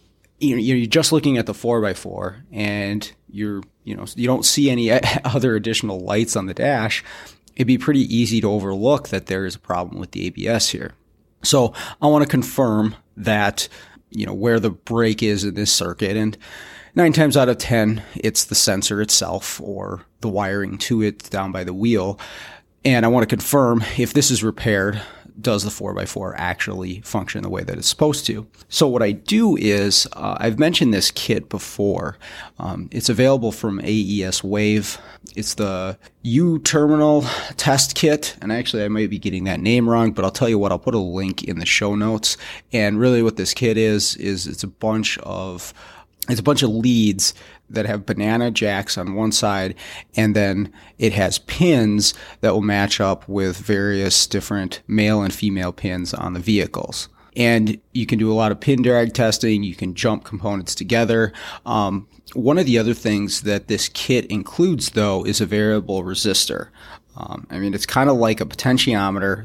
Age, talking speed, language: 30-49, 185 wpm, English